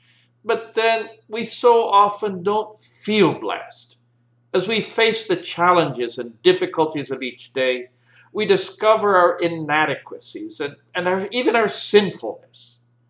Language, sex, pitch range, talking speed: English, male, 125-195 Hz, 125 wpm